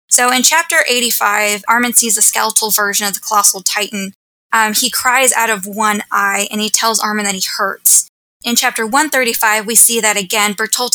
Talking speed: 190 wpm